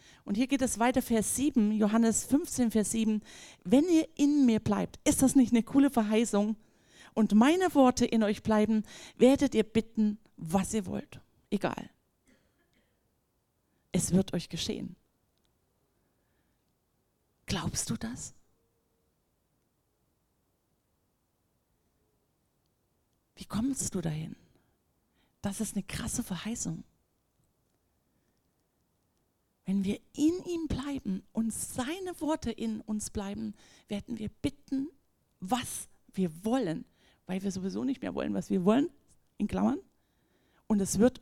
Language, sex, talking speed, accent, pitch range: German, female, 120 wpm, German, 200-250 Hz